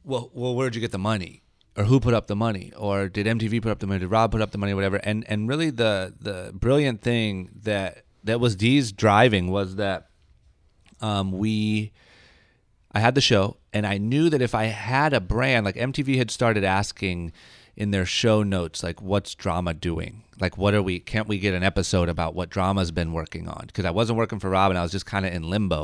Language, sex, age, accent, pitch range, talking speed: English, male, 30-49, American, 90-115 Hz, 230 wpm